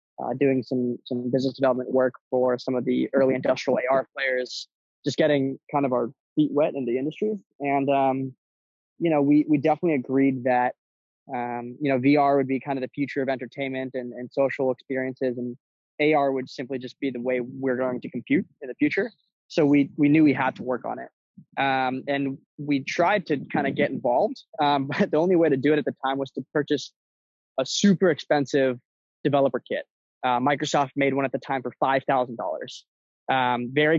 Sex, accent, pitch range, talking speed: male, American, 130-150 Hz, 200 wpm